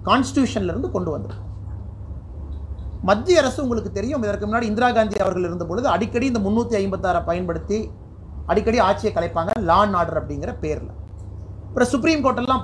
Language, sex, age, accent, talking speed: Tamil, male, 30-49, native, 130 wpm